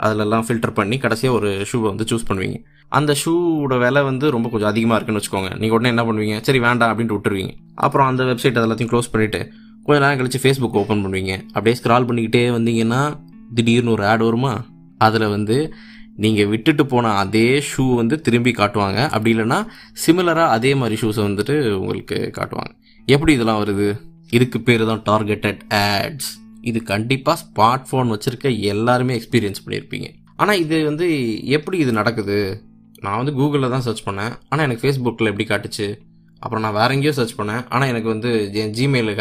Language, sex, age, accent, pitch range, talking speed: Tamil, male, 20-39, native, 110-135 Hz, 165 wpm